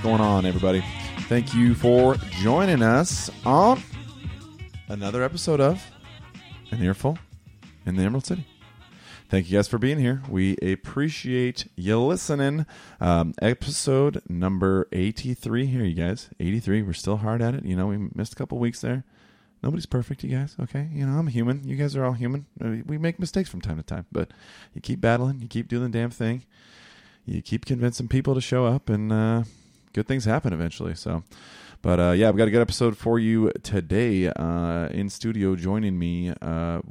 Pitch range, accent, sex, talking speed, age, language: 90-125 Hz, American, male, 180 wpm, 30-49, English